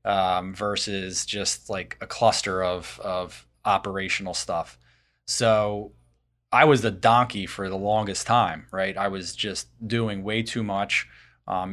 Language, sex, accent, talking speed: English, male, American, 145 wpm